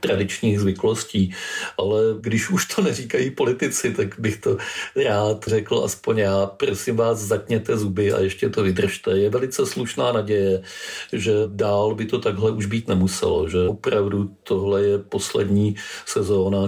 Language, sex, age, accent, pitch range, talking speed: Czech, male, 50-69, native, 95-110 Hz, 150 wpm